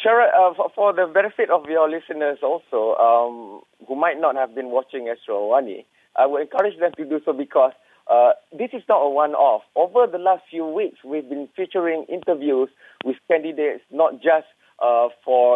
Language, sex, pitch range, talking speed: English, male, 130-210 Hz, 175 wpm